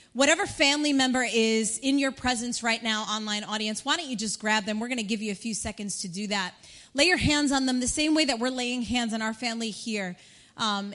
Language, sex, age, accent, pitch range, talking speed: English, female, 30-49, American, 205-260 Hz, 245 wpm